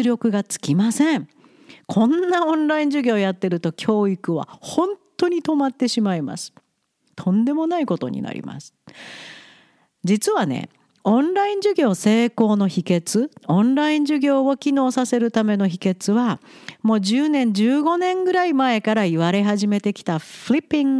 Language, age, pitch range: Japanese, 50-69, 190-300 Hz